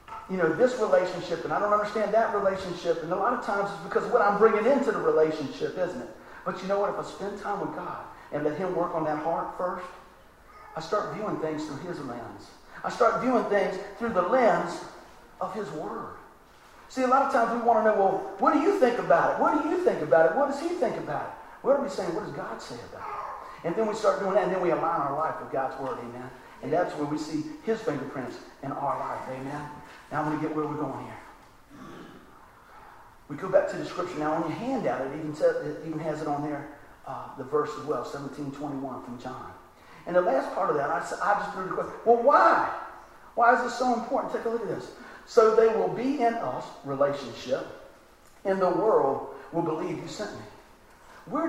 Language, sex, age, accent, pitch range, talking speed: English, male, 40-59, American, 150-235 Hz, 235 wpm